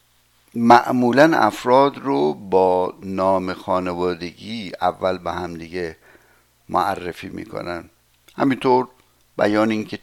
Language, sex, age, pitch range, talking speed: Persian, male, 60-79, 90-110 Hz, 90 wpm